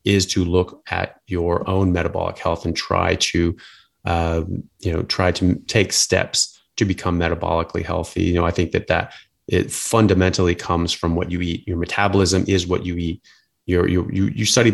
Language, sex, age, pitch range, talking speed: English, male, 30-49, 85-100 Hz, 185 wpm